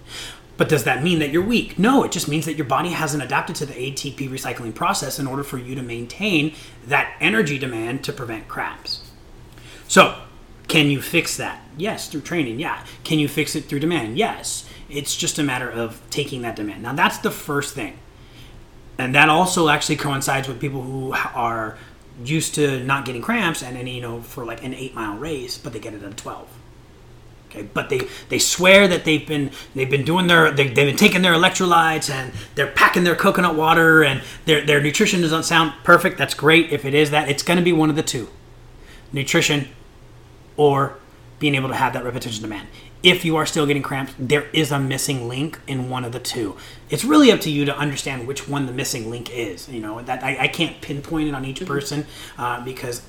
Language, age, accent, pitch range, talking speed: English, 30-49, American, 130-155 Hz, 215 wpm